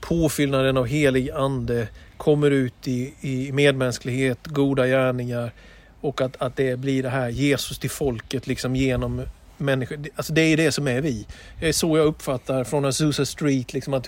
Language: Swedish